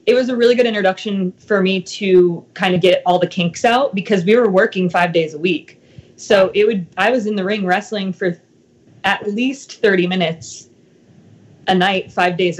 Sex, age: female, 20-39